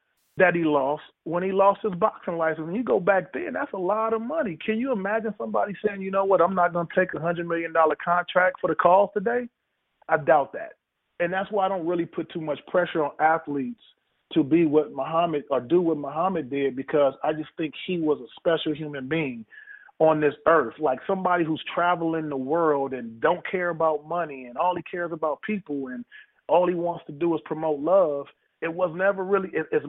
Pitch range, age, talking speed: 150-190 Hz, 30-49, 220 wpm